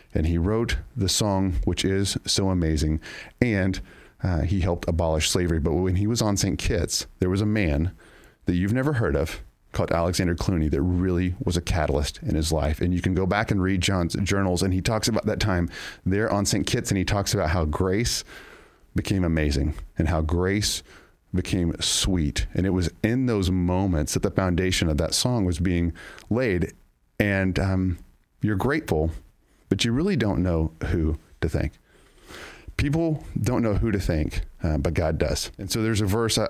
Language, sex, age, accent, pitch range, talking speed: English, male, 40-59, American, 85-110 Hz, 190 wpm